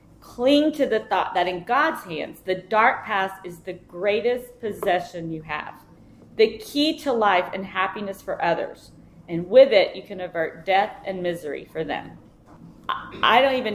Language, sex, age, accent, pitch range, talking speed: English, female, 30-49, American, 175-255 Hz, 170 wpm